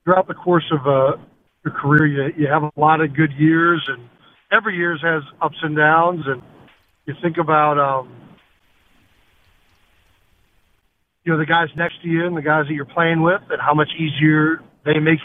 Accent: American